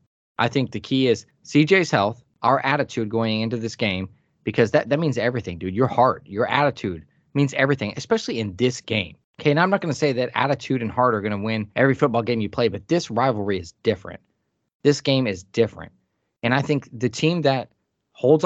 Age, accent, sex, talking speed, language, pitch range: 20-39, American, male, 210 wpm, English, 105-135 Hz